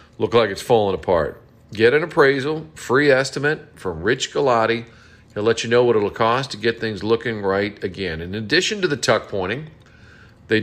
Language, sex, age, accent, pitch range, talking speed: English, male, 40-59, American, 110-140 Hz, 185 wpm